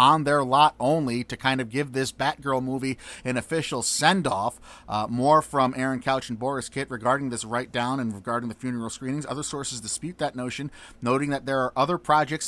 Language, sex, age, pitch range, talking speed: English, male, 30-49, 120-150 Hz, 205 wpm